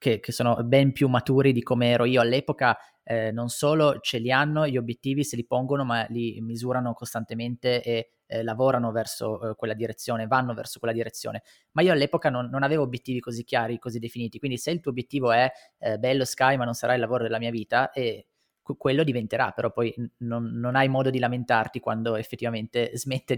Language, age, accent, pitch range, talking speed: Italian, 20-39, native, 115-125 Hz, 205 wpm